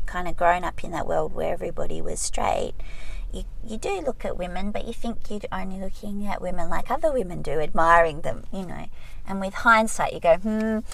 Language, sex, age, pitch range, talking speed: English, female, 30-49, 180-235 Hz, 215 wpm